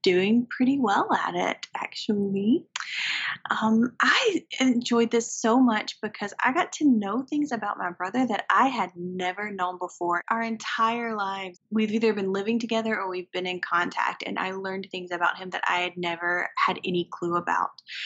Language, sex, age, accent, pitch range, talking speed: English, female, 20-39, American, 185-235 Hz, 180 wpm